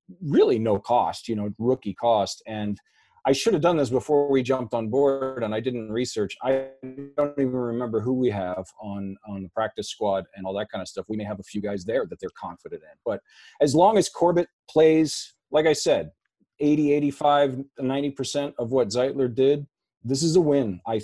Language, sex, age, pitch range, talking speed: English, male, 40-59, 105-135 Hz, 205 wpm